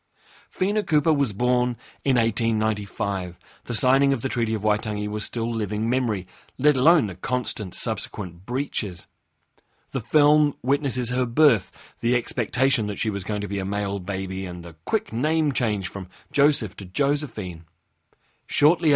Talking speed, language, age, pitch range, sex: 160 wpm, English, 40-59, 105-135 Hz, male